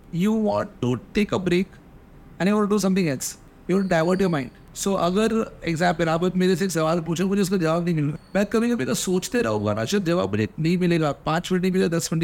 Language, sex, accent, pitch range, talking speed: English, male, Indian, 165-205 Hz, 150 wpm